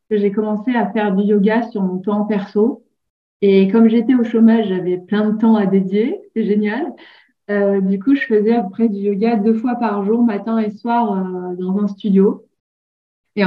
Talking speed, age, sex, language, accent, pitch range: 200 wpm, 20-39, female, French, French, 195-225 Hz